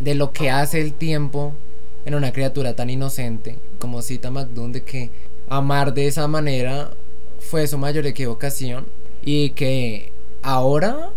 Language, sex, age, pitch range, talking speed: Spanish, male, 20-39, 125-150 Hz, 145 wpm